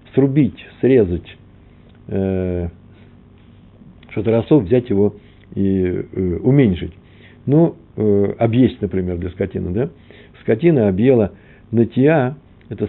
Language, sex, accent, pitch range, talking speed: Russian, male, native, 95-125 Hz, 85 wpm